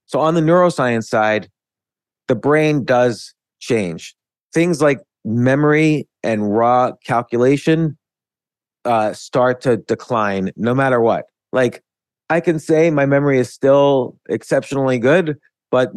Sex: male